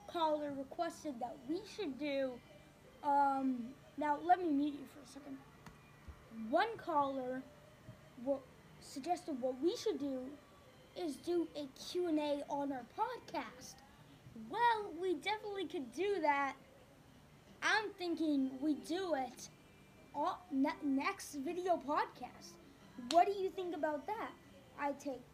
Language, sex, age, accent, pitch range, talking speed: English, female, 20-39, American, 275-345 Hz, 130 wpm